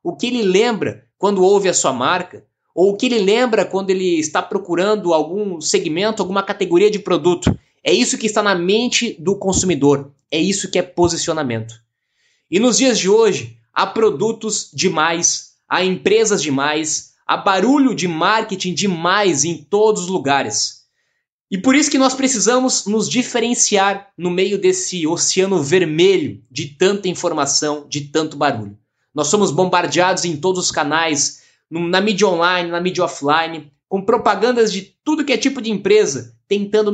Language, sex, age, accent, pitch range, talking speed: Portuguese, male, 20-39, Brazilian, 155-215 Hz, 160 wpm